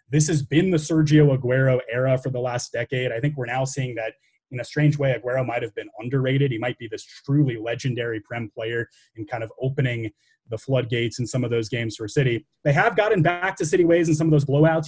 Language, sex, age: English, male, 20-39